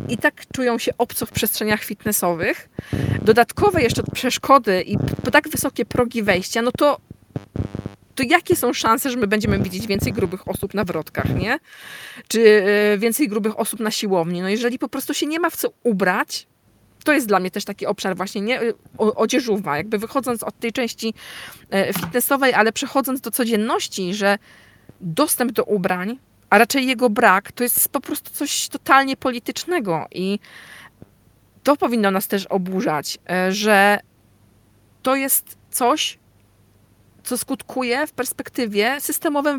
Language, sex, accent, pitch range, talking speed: Polish, female, native, 190-260 Hz, 150 wpm